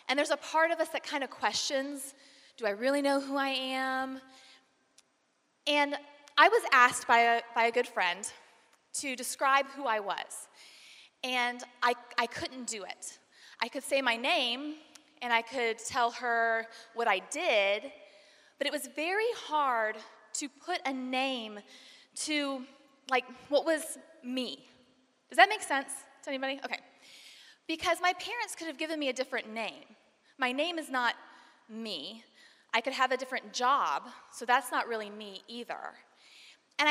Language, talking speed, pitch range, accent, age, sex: English, 160 wpm, 240-300 Hz, American, 20-39, female